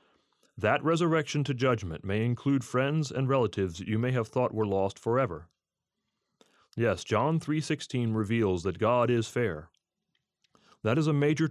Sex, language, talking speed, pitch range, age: male, English, 145 wpm, 105-140 Hz, 30-49